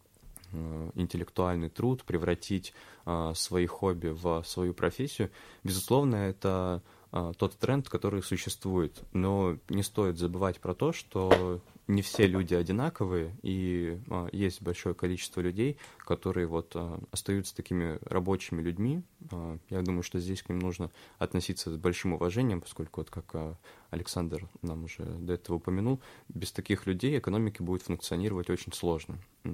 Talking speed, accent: 140 wpm, native